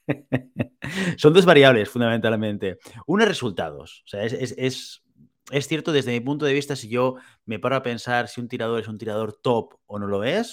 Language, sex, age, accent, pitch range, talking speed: Spanish, male, 30-49, Spanish, 110-135 Hz, 190 wpm